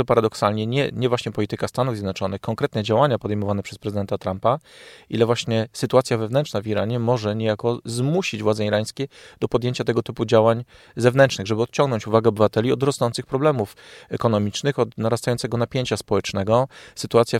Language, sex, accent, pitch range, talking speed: Polish, male, native, 105-120 Hz, 150 wpm